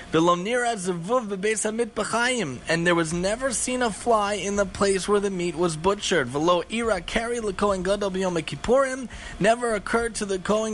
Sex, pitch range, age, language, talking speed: male, 180-230 Hz, 30-49, English, 140 wpm